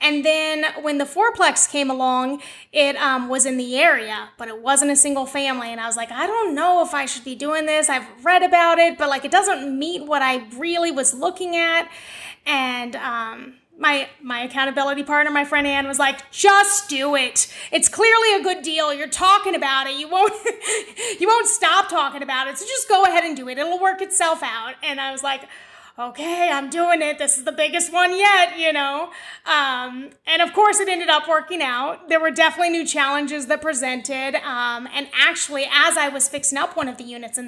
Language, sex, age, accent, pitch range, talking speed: English, female, 30-49, American, 275-355 Hz, 215 wpm